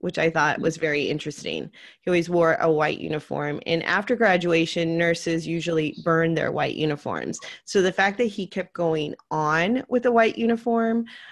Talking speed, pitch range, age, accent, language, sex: 175 wpm, 165-205 Hz, 30-49, American, English, female